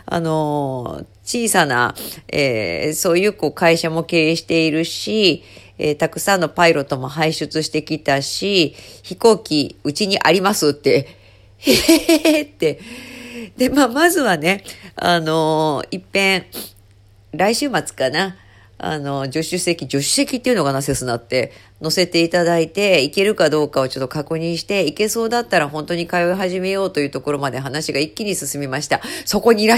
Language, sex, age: Japanese, female, 40-59